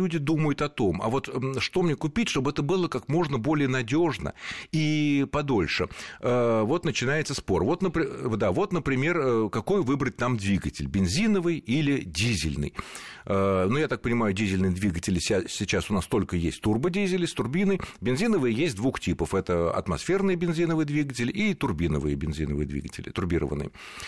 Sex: male